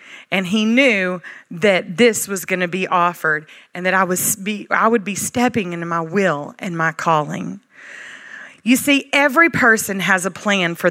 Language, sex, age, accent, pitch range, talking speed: English, female, 30-49, American, 170-230 Hz, 160 wpm